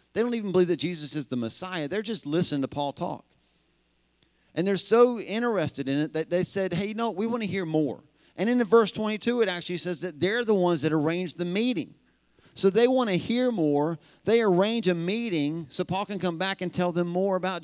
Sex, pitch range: male, 140-195 Hz